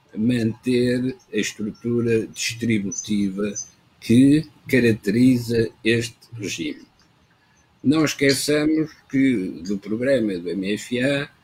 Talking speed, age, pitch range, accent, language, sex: 80 wpm, 60-79, 115-145 Hz, Portuguese, Portuguese, male